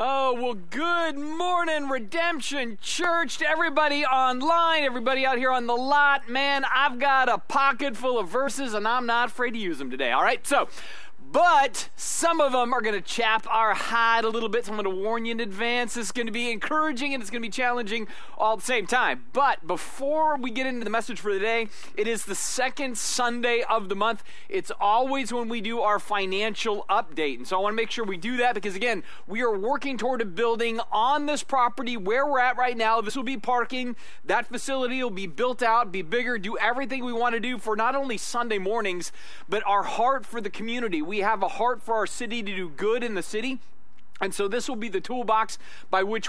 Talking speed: 225 wpm